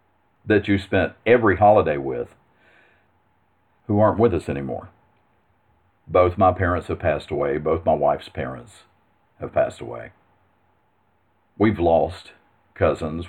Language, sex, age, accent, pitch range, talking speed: English, male, 50-69, American, 85-105 Hz, 120 wpm